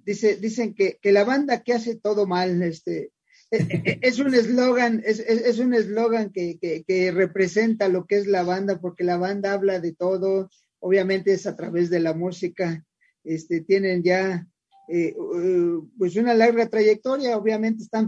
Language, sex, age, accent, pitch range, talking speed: English, male, 40-59, Mexican, 185-220 Hz, 175 wpm